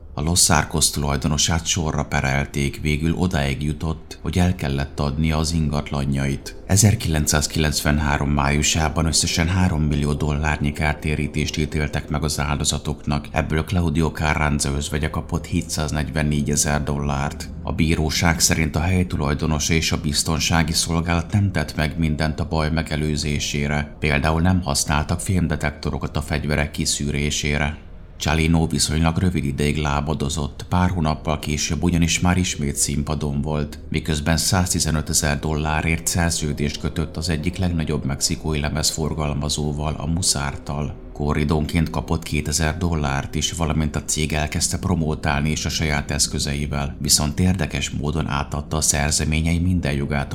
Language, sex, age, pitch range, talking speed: Hungarian, male, 30-49, 75-80 Hz, 125 wpm